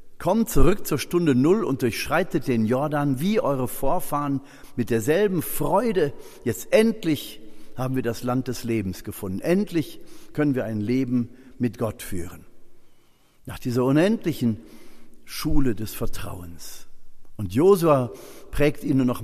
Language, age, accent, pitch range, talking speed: German, 50-69, German, 110-145 Hz, 135 wpm